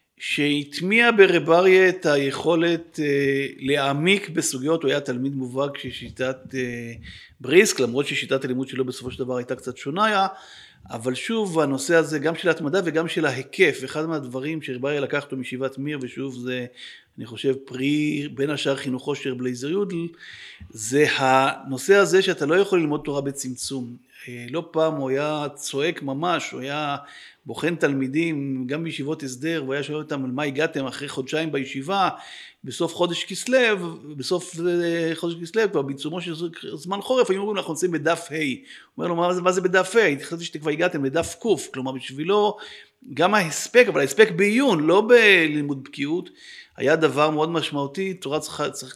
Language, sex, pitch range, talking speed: Hebrew, male, 135-175 Hz, 160 wpm